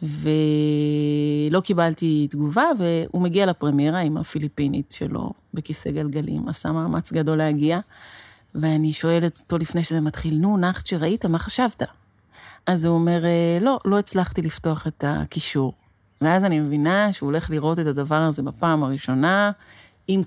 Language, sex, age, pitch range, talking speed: Hebrew, female, 30-49, 150-185 Hz, 135 wpm